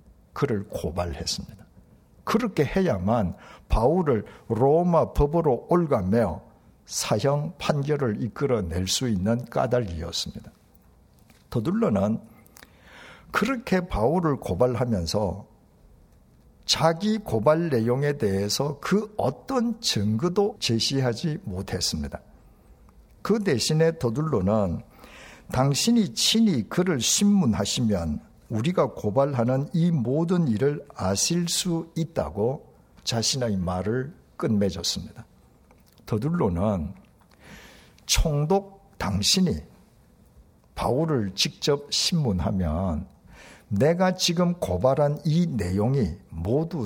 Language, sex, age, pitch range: Korean, male, 60-79, 105-170 Hz